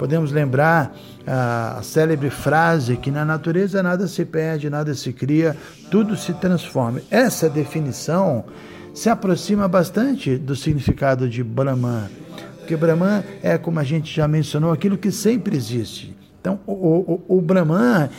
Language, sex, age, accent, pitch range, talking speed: Portuguese, male, 60-79, Brazilian, 145-190 Hz, 140 wpm